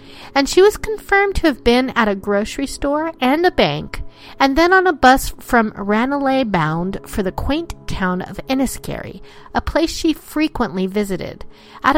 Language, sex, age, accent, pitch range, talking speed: English, female, 40-59, American, 185-275 Hz, 170 wpm